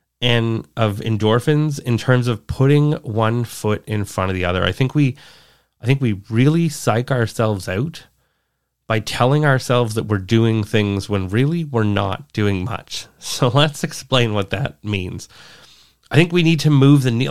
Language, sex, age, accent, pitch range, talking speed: English, male, 30-49, American, 105-140 Hz, 175 wpm